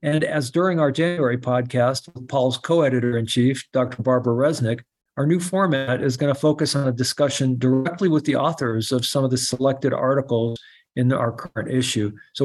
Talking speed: 185 wpm